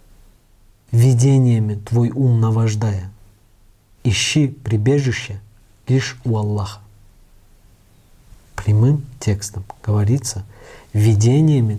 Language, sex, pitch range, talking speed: Russian, male, 100-120 Hz, 65 wpm